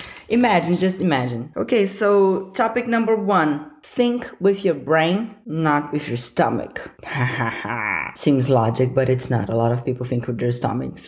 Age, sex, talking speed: 30-49, female, 160 wpm